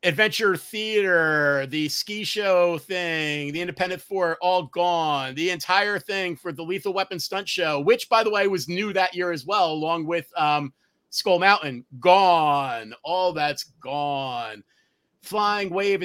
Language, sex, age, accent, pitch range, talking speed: English, male, 30-49, American, 150-190 Hz, 155 wpm